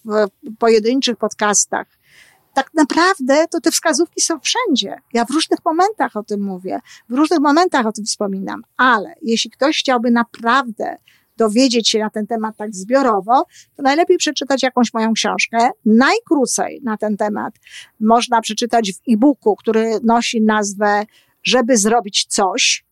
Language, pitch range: Polish, 225-310 Hz